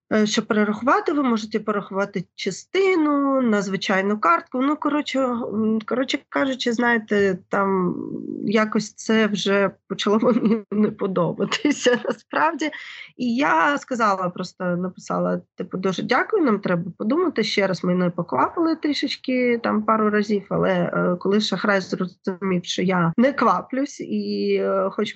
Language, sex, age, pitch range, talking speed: Ukrainian, female, 20-39, 190-245 Hz, 125 wpm